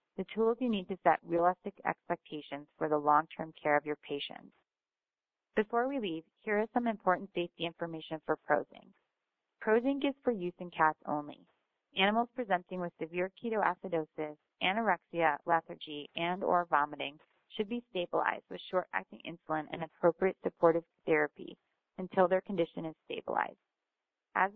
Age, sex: 30-49, female